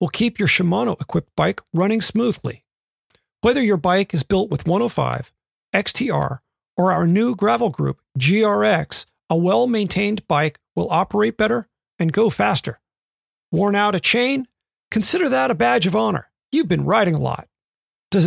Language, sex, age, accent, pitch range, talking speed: English, male, 40-59, American, 185-230 Hz, 150 wpm